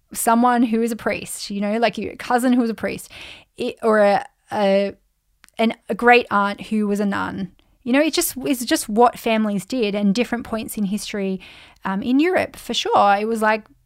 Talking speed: 210 wpm